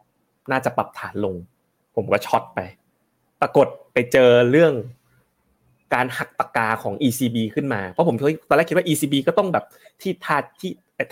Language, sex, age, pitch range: Thai, male, 20-39, 110-145 Hz